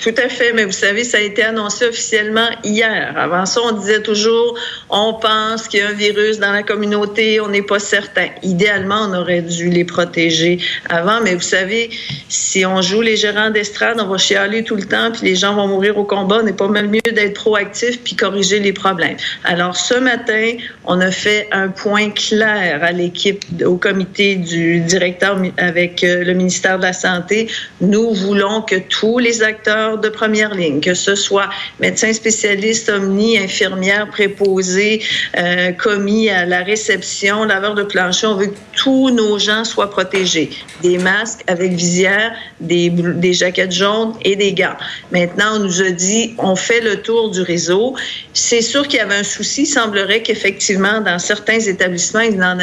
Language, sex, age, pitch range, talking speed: French, female, 50-69, 185-220 Hz, 185 wpm